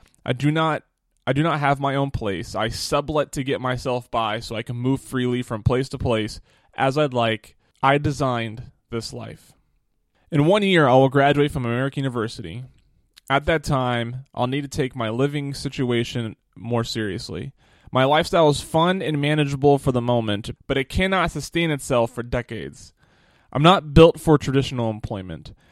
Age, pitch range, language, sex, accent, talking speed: 20-39, 120-150 Hz, English, male, American, 175 wpm